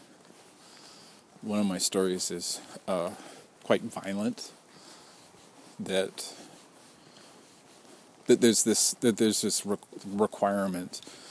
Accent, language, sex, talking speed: American, English, male, 85 wpm